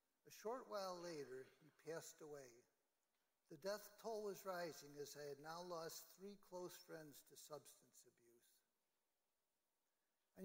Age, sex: 60-79, male